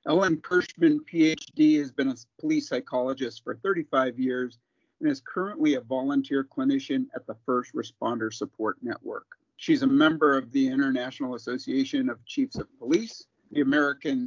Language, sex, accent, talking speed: English, male, American, 150 wpm